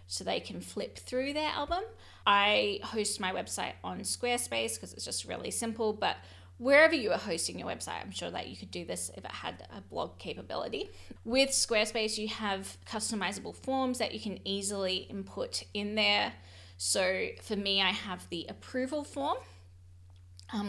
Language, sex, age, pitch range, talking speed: English, female, 20-39, 180-235 Hz, 175 wpm